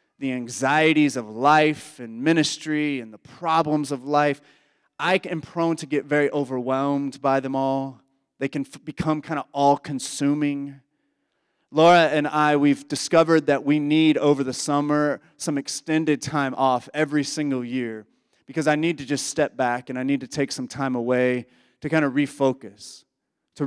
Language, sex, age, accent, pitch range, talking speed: English, male, 30-49, American, 135-160 Hz, 165 wpm